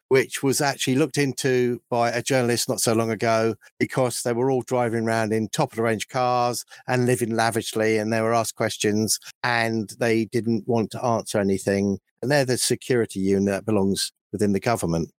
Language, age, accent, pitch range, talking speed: English, 50-69, British, 115-155 Hz, 195 wpm